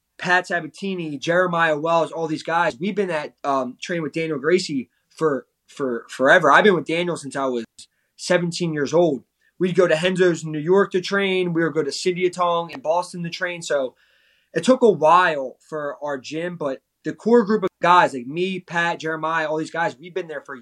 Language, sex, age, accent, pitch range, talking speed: English, male, 20-39, American, 155-180 Hz, 210 wpm